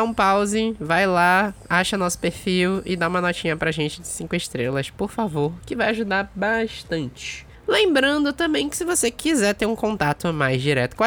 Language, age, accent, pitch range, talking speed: Portuguese, 20-39, Brazilian, 175-235 Hz, 190 wpm